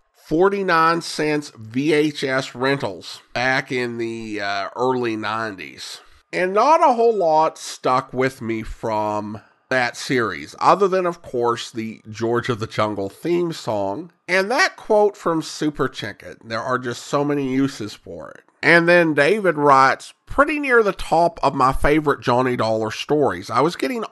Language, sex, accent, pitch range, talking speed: English, male, American, 115-150 Hz, 150 wpm